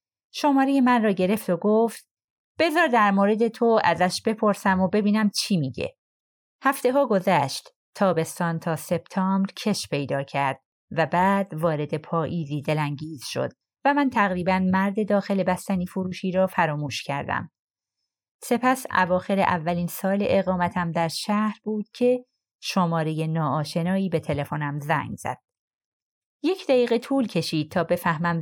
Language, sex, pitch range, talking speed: Persian, female, 160-215 Hz, 130 wpm